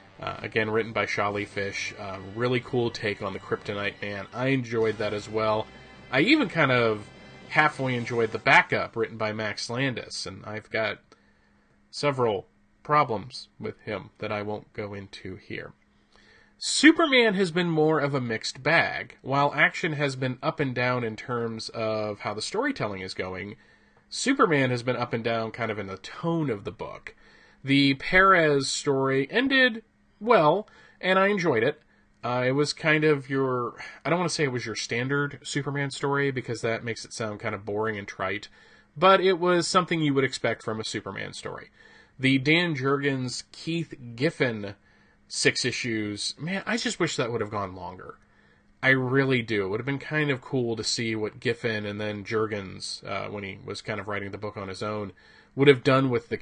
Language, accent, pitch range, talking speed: English, American, 110-150 Hz, 190 wpm